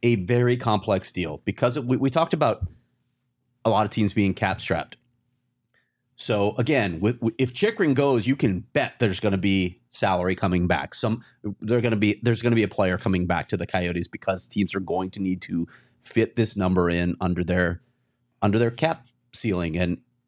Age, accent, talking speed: 30-49, American, 195 wpm